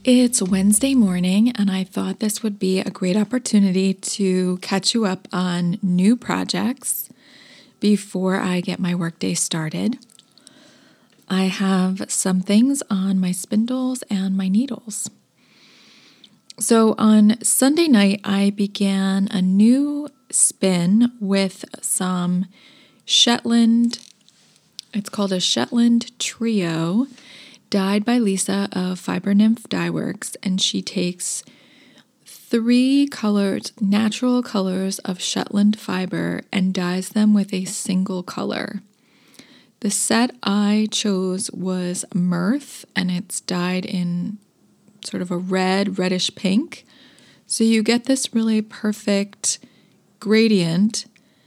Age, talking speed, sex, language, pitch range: 20-39, 115 wpm, female, English, 190-230 Hz